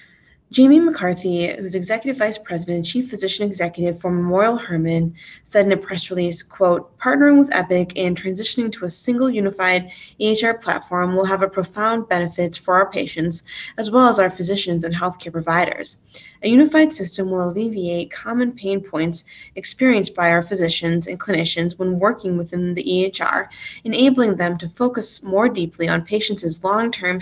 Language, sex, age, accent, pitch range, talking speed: English, female, 20-39, American, 175-210 Hz, 165 wpm